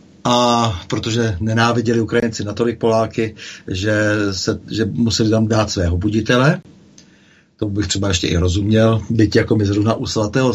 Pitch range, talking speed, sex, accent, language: 100-120 Hz, 150 wpm, male, native, Czech